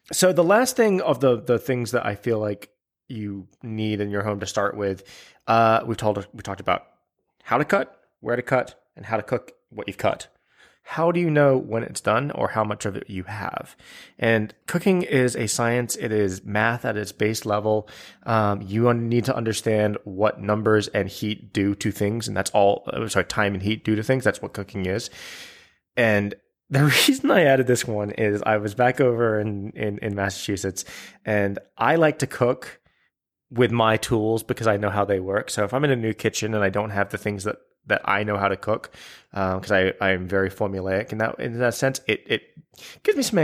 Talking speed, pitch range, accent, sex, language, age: 220 wpm, 100-125 Hz, American, male, English, 20-39